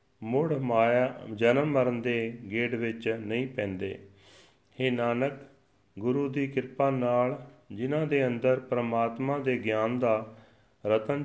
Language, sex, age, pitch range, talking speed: Punjabi, male, 40-59, 110-130 Hz, 125 wpm